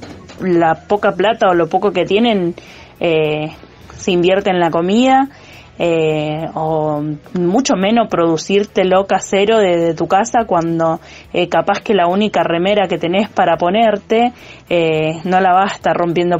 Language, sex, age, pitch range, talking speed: Spanish, female, 20-39, 165-200 Hz, 150 wpm